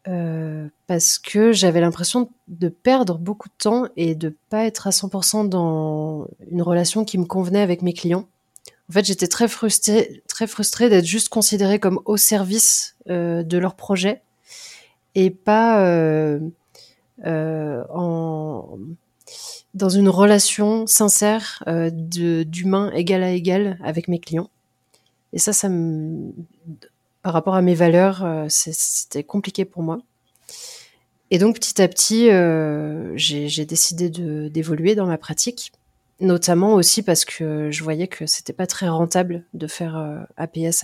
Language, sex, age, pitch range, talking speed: French, female, 30-49, 160-200 Hz, 150 wpm